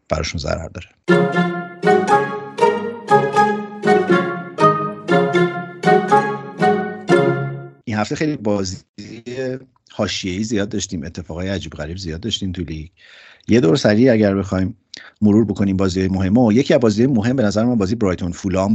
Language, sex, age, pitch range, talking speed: Persian, male, 50-69, 90-115 Hz, 110 wpm